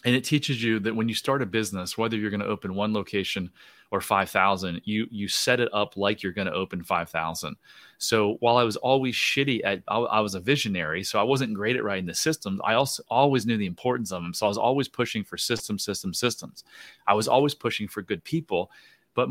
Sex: male